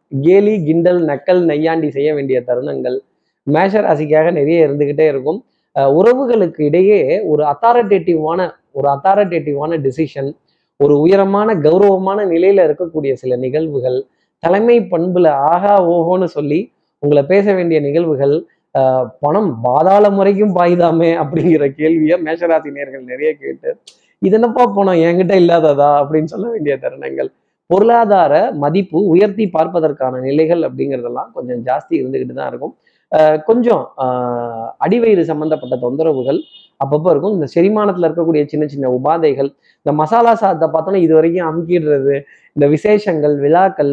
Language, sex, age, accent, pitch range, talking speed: Tamil, male, 20-39, native, 145-195 Hz, 115 wpm